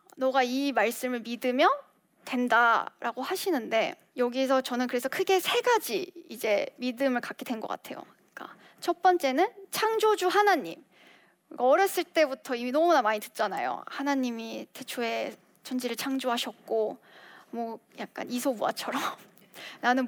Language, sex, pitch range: Korean, female, 245-335 Hz